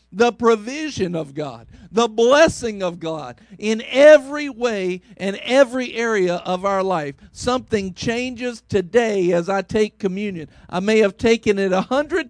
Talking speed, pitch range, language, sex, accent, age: 150 wpm, 185-255 Hz, English, male, American, 50-69